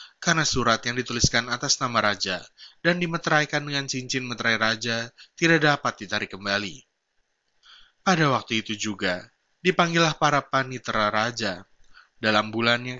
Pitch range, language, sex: 110-145 Hz, Indonesian, male